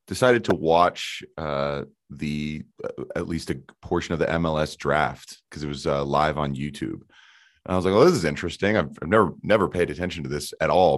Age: 30-49